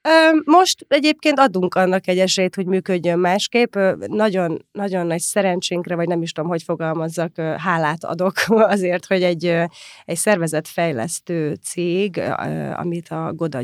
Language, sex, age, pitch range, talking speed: Hungarian, female, 30-49, 160-190 Hz, 135 wpm